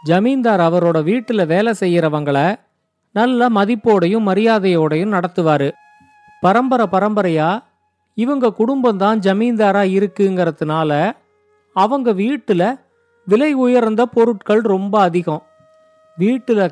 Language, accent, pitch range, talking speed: Tamil, native, 175-240 Hz, 85 wpm